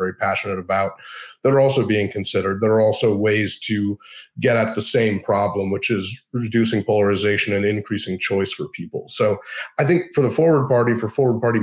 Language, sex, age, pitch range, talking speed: English, male, 30-49, 105-130 Hz, 190 wpm